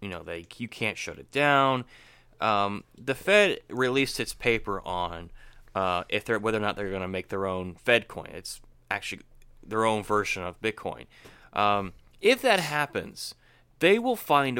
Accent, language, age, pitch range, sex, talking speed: American, English, 20-39, 100-135 Hz, male, 175 wpm